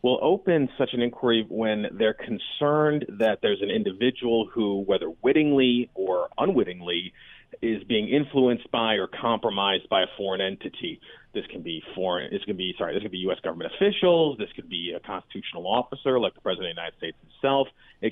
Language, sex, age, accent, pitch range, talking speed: English, male, 40-59, American, 110-140 Hz, 190 wpm